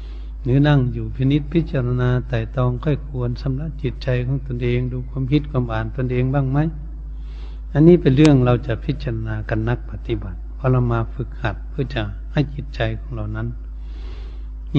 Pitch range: 100-125 Hz